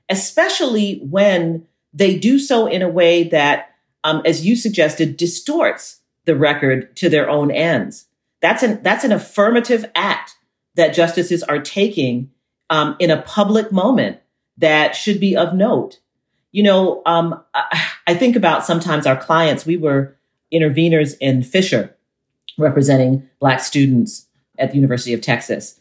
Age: 40-59